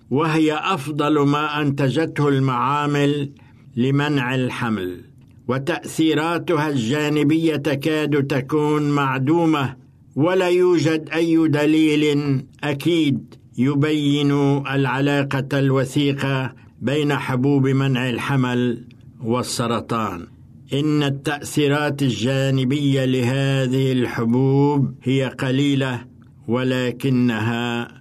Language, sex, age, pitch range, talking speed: Arabic, male, 60-79, 125-145 Hz, 70 wpm